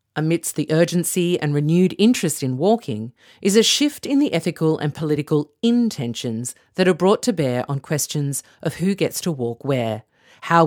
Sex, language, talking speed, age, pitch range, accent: female, English, 175 wpm, 50-69, 130-185 Hz, Australian